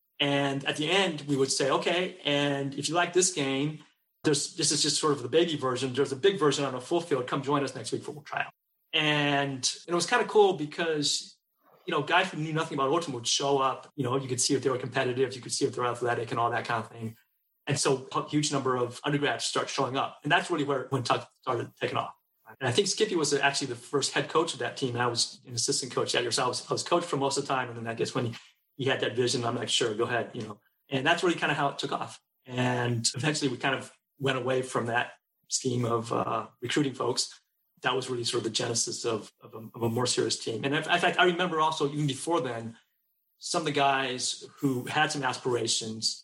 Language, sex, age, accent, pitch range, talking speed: English, male, 30-49, American, 125-150 Hz, 260 wpm